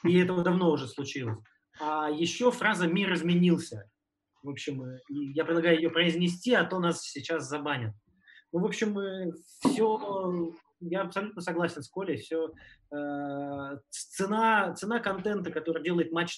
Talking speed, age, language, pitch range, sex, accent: 140 wpm, 20-39, Russian, 135-170 Hz, male, native